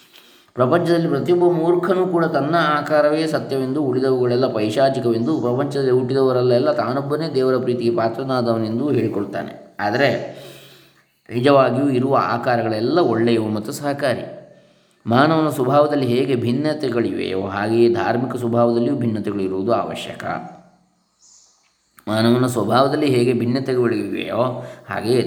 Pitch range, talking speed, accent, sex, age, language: 120-150 Hz, 85 wpm, native, male, 20-39, Kannada